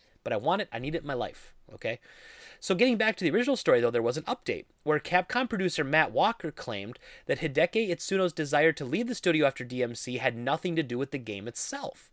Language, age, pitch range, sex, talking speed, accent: English, 30-49, 125-180 Hz, male, 235 wpm, American